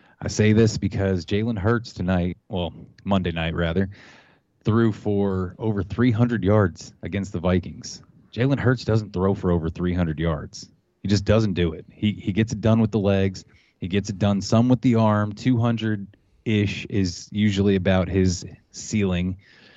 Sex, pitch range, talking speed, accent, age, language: male, 90-110 Hz, 165 wpm, American, 20-39, English